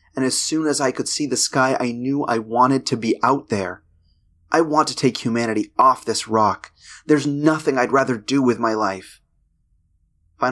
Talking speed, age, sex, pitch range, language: 200 wpm, 30-49, male, 85-125 Hz, English